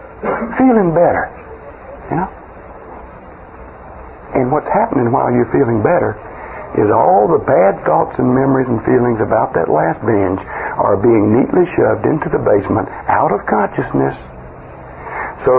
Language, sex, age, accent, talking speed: English, male, 60-79, American, 135 wpm